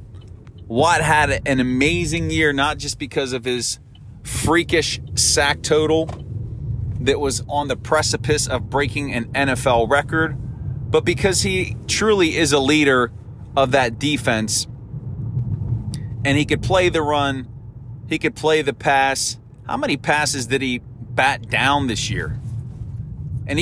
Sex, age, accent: male, 30-49, American